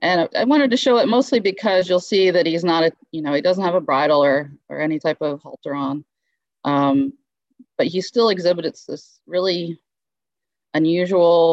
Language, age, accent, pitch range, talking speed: English, 30-49, American, 155-225 Hz, 185 wpm